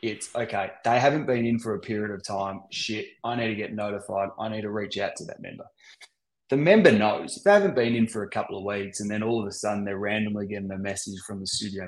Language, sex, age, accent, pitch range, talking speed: English, male, 20-39, Australian, 100-115 Hz, 265 wpm